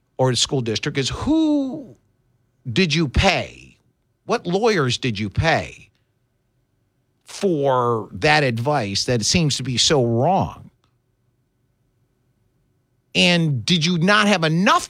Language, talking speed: English, 115 wpm